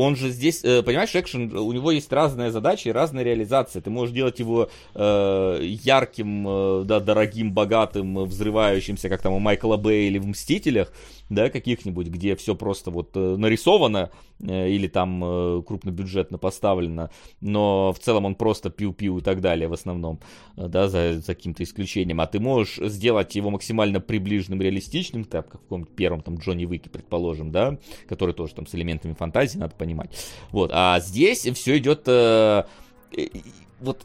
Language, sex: Russian, male